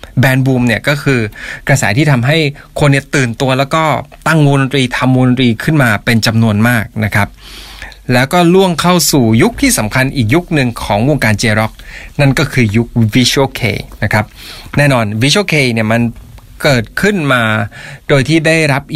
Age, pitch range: 20-39, 115-140 Hz